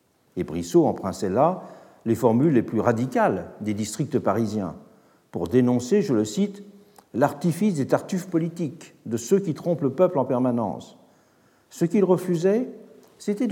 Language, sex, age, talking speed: French, male, 60-79, 145 wpm